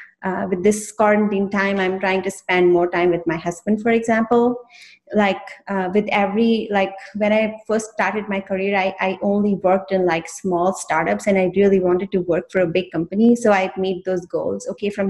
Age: 30-49